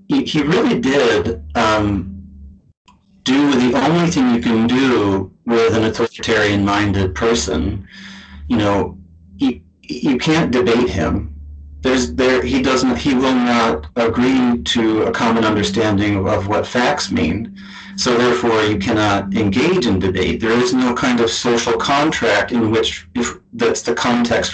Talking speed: 145 wpm